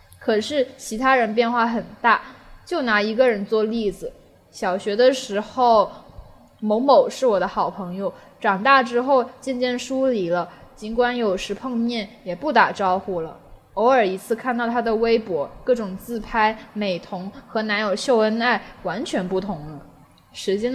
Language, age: Chinese, 10-29